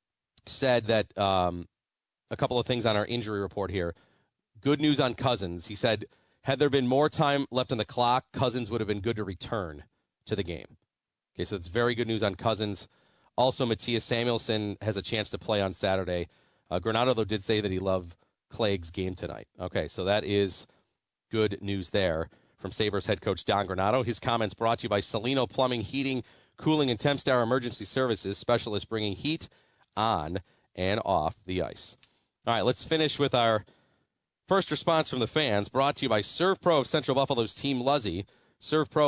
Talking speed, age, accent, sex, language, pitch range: 190 wpm, 40-59, American, male, English, 100-130 Hz